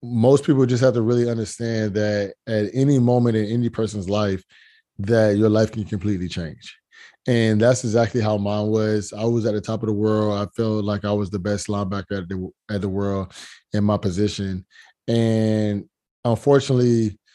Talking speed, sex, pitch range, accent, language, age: 180 wpm, male, 105-115 Hz, American, English, 20-39